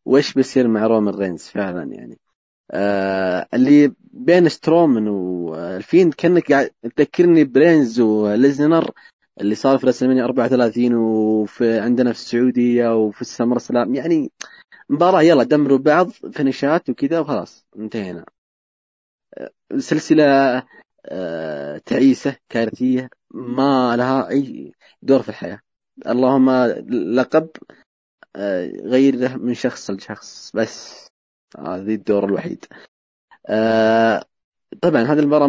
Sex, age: male, 20-39